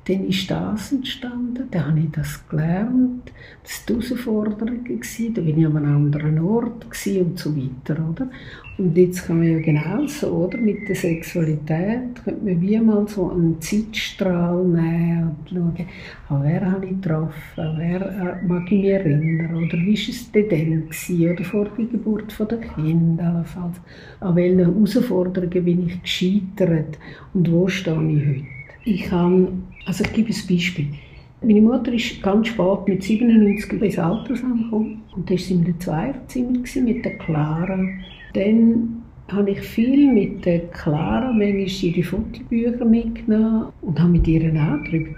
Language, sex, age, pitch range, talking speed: German, female, 60-79, 165-215 Hz, 160 wpm